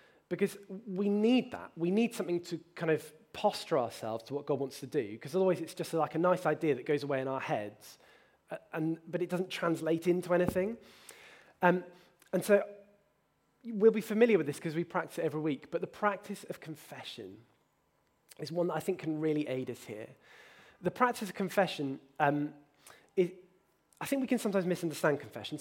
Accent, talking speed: British, 190 wpm